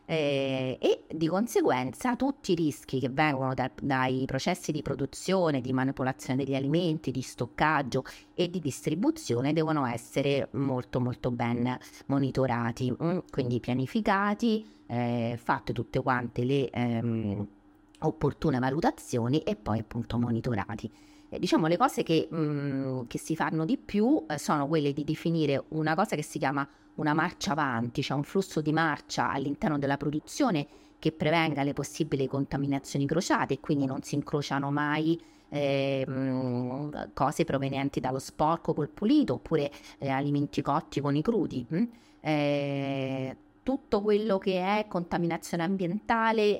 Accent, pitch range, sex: native, 130-160 Hz, female